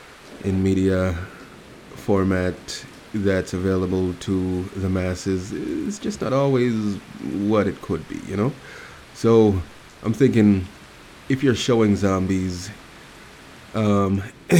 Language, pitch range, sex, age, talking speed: English, 85-100 Hz, male, 30-49, 105 wpm